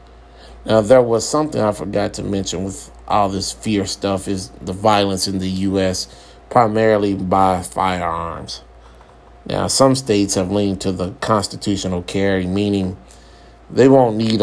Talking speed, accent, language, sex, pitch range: 145 wpm, American, English, male, 80-105 Hz